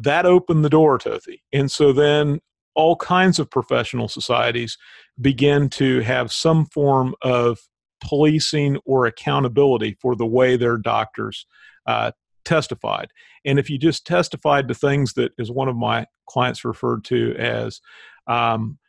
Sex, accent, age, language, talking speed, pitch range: male, American, 40-59, English, 150 wpm, 125-150 Hz